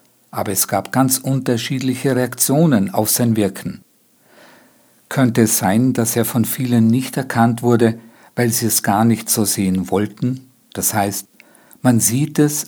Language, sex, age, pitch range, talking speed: German, male, 50-69, 115-140 Hz, 150 wpm